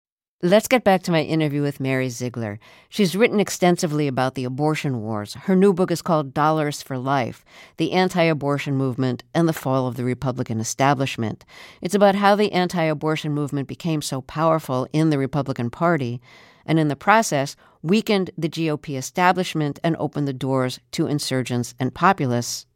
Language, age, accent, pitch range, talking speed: English, 50-69, American, 130-165 Hz, 165 wpm